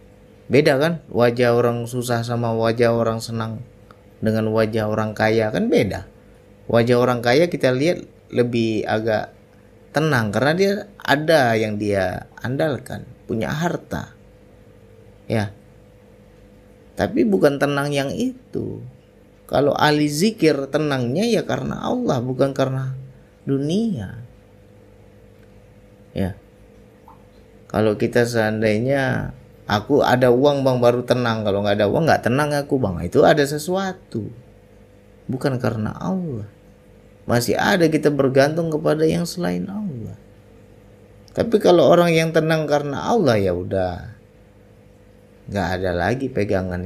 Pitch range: 100-135 Hz